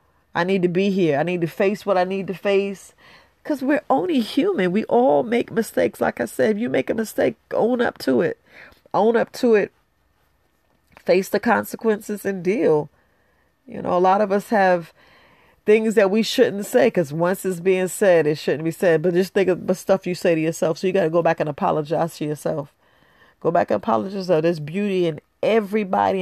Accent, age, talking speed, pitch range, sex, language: American, 40-59, 215 wpm, 160-195 Hz, female, English